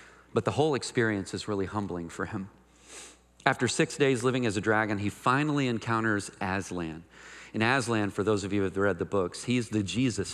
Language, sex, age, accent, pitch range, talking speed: English, male, 40-59, American, 95-120 Hz, 195 wpm